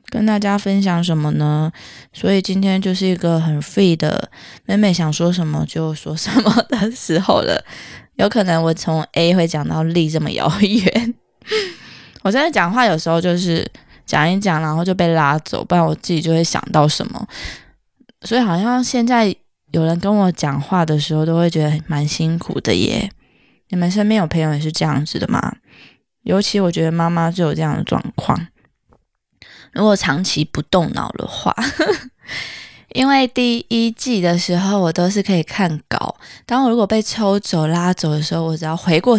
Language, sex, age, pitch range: Chinese, female, 20-39, 160-210 Hz